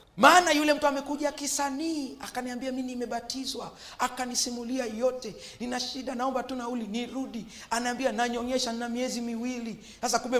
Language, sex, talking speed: Swahili, male, 135 wpm